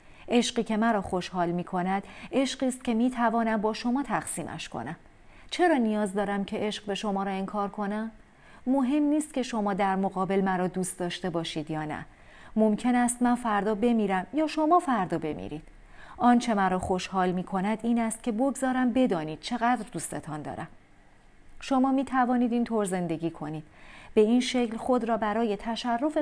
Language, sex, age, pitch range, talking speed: Persian, female, 40-59, 190-245 Hz, 155 wpm